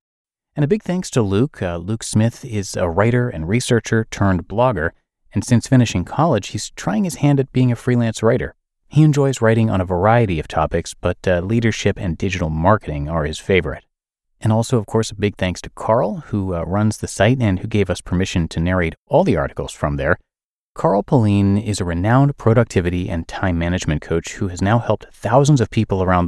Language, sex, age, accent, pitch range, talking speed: English, male, 30-49, American, 90-120 Hz, 205 wpm